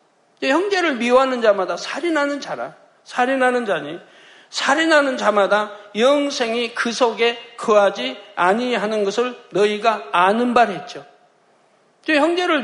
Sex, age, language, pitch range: male, 60-79, Korean, 205-280 Hz